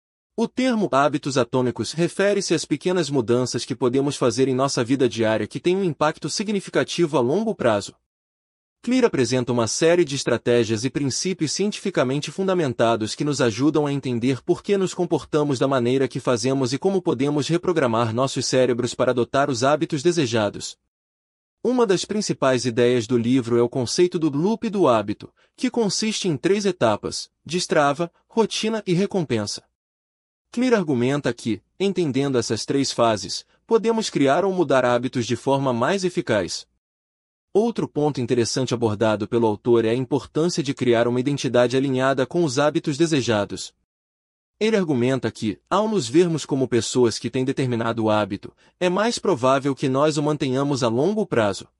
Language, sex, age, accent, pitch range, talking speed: Portuguese, male, 30-49, Brazilian, 120-175 Hz, 155 wpm